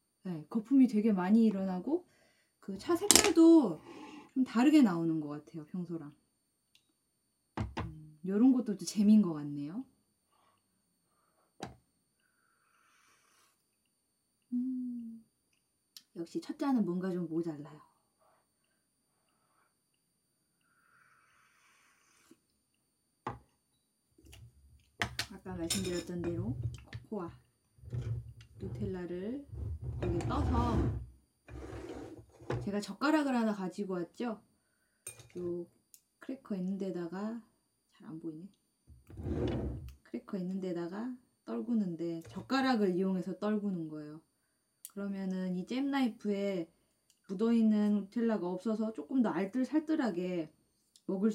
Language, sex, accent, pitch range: Korean, female, native, 170-235 Hz